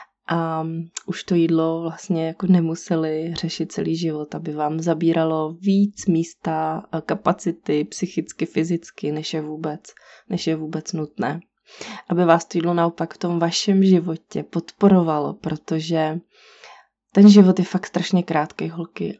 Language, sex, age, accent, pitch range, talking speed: Czech, female, 20-39, native, 165-190 Hz, 135 wpm